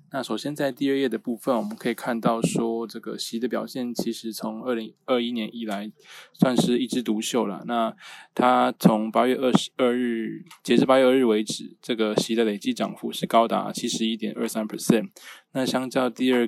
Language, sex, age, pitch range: Chinese, male, 20-39, 110-125 Hz